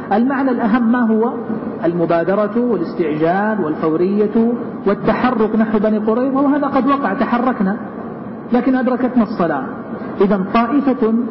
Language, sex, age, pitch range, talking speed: Arabic, male, 50-69, 195-240 Hz, 105 wpm